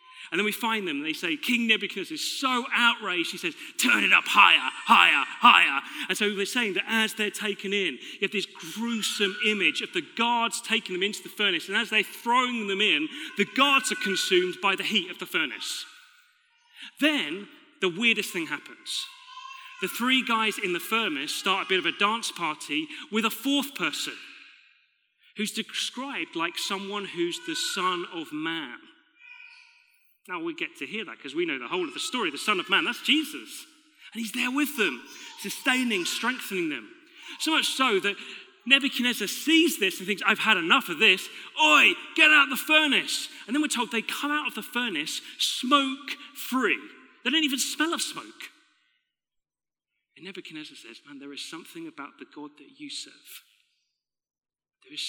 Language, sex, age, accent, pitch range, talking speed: English, male, 30-49, British, 205-315 Hz, 185 wpm